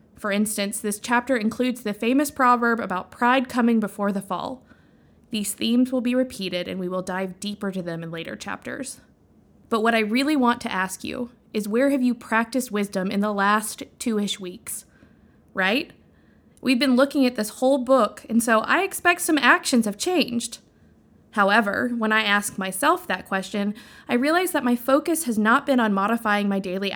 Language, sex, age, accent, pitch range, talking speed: English, female, 20-39, American, 195-250 Hz, 185 wpm